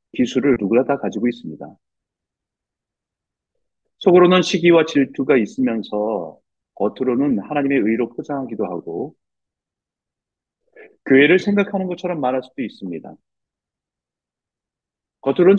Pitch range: 115-175 Hz